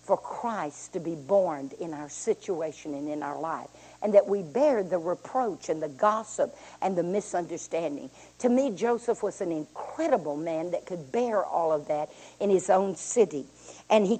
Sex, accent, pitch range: female, American, 175-235 Hz